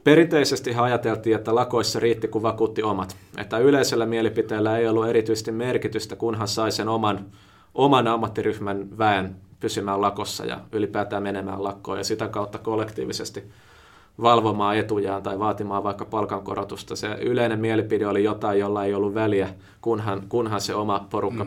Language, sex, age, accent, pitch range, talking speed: Finnish, male, 30-49, native, 100-115 Hz, 145 wpm